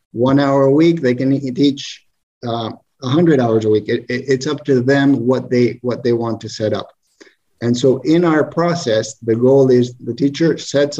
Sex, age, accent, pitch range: male, 50-69, American, 120-140 Hz